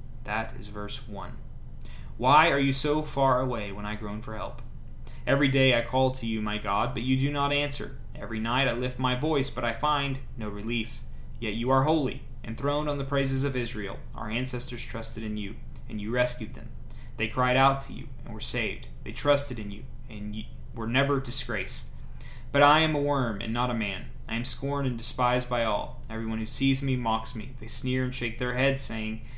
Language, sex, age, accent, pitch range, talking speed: English, male, 20-39, American, 110-135 Hz, 210 wpm